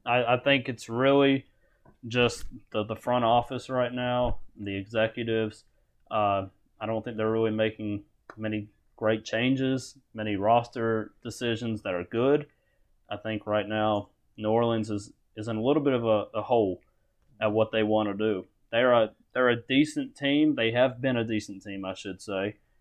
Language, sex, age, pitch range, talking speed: English, male, 20-39, 105-130 Hz, 175 wpm